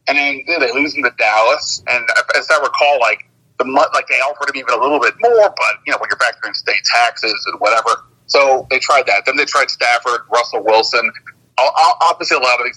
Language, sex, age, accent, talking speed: English, male, 40-59, American, 240 wpm